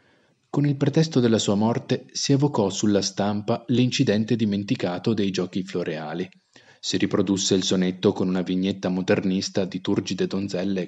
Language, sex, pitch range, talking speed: Italian, male, 95-125 Hz, 145 wpm